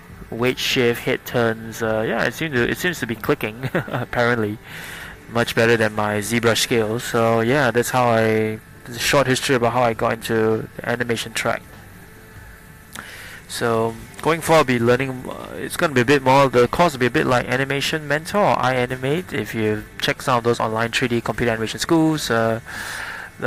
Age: 20-39